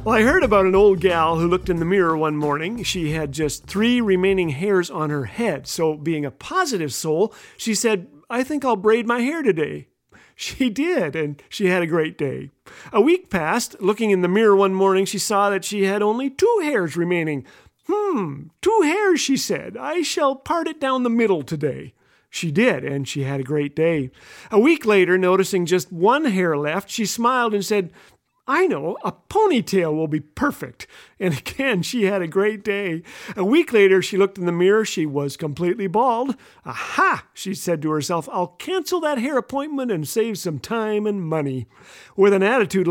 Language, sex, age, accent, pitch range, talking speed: English, male, 40-59, American, 170-235 Hz, 195 wpm